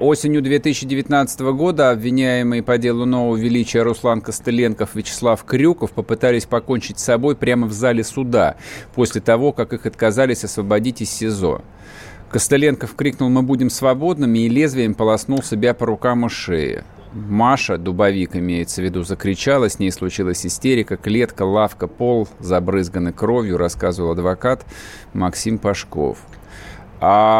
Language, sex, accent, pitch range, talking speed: Russian, male, native, 100-135 Hz, 135 wpm